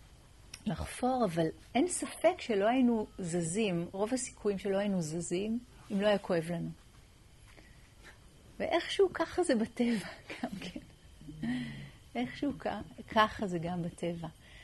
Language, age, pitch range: Hebrew, 40-59, 180-240 Hz